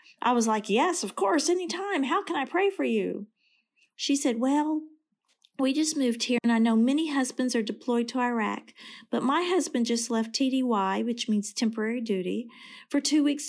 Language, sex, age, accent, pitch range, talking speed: English, female, 40-59, American, 210-285 Hz, 185 wpm